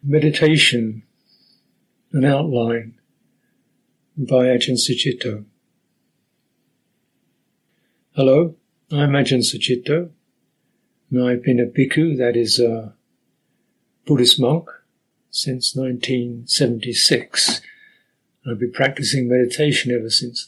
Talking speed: 80 wpm